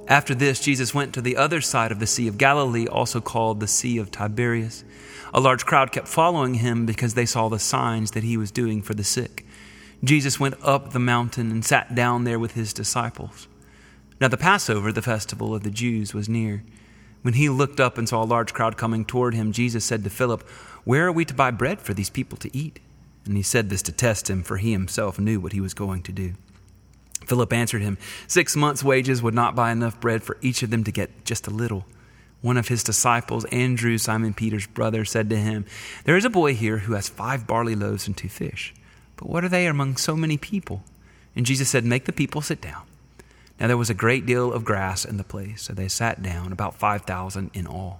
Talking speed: 230 wpm